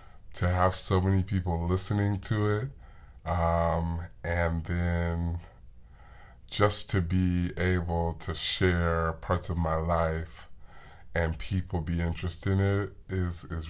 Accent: American